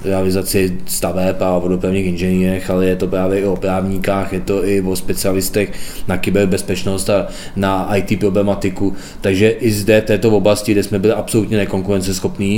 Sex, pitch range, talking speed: male, 90-100 Hz, 160 wpm